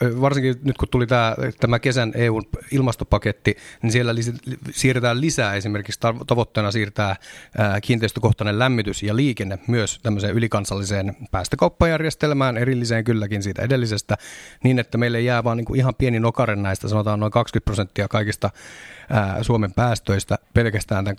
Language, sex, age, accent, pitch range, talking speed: Finnish, male, 30-49, native, 105-125 Hz, 135 wpm